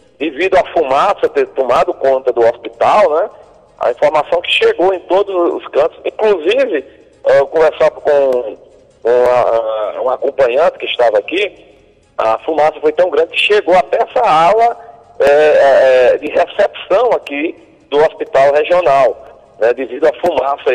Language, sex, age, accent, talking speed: Portuguese, male, 40-59, Brazilian, 140 wpm